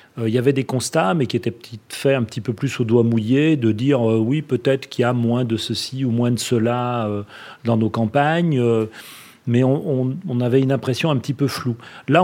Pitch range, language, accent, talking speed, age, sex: 110-145 Hz, French, French, 235 wpm, 40-59, male